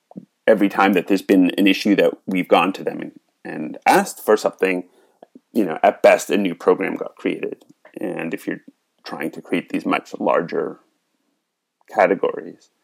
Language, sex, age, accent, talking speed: English, male, 30-49, American, 170 wpm